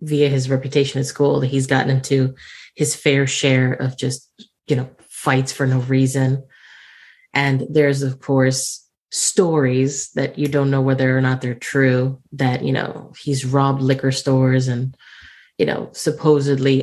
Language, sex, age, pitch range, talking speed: English, female, 30-49, 135-150 Hz, 160 wpm